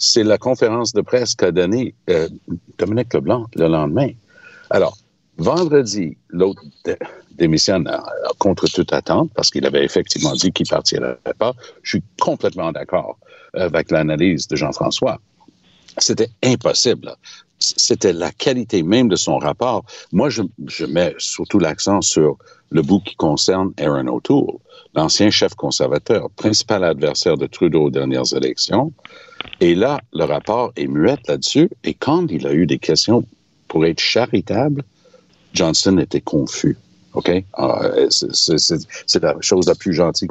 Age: 60-79